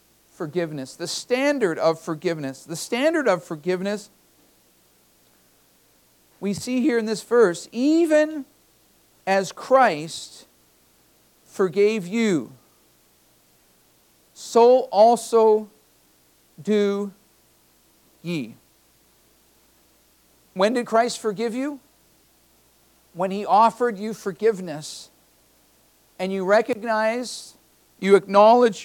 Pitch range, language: 185-230 Hz, English